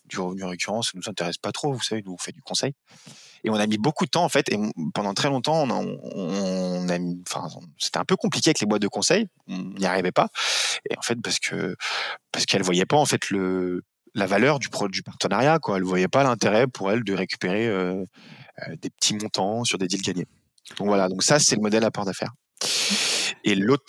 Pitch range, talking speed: 95-110 Hz, 235 wpm